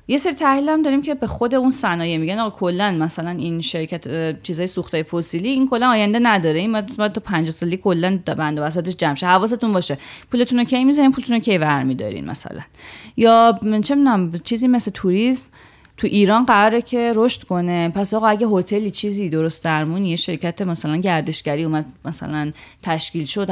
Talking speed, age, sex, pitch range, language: 165 wpm, 30-49, female, 165-225 Hz, Persian